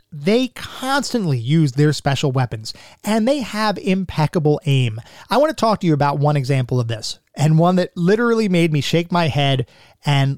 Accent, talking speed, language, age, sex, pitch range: American, 185 wpm, English, 30-49, male, 130-165 Hz